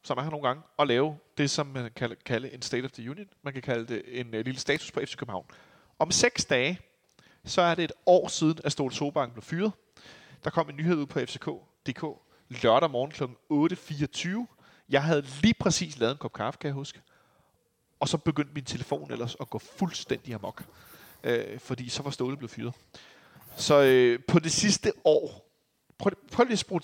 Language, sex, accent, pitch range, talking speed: Danish, male, native, 120-150 Hz, 190 wpm